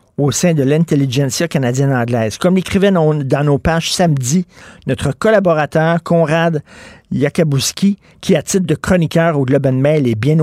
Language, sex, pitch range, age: French, male, 130-170 Hz, 50-69